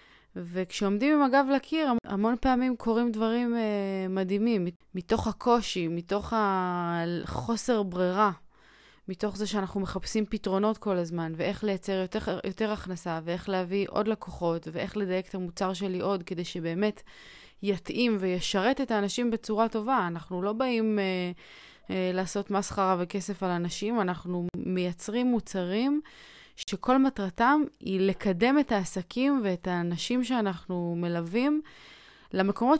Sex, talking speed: female, 125 wpm